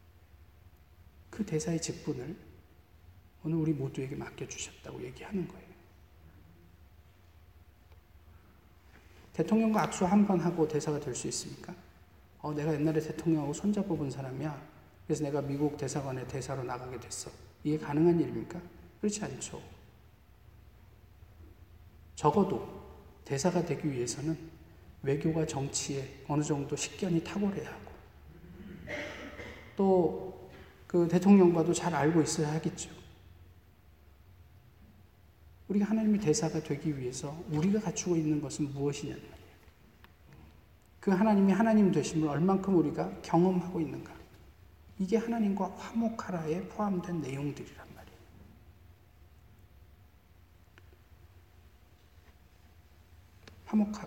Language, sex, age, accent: Korean, male, 40-59, native